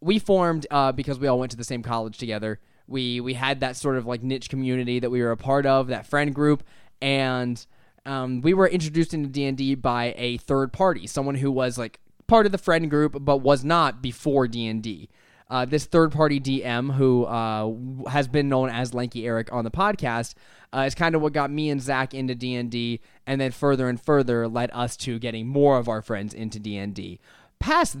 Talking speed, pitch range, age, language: 210 wpm, 120-145 Hz, 10-29, English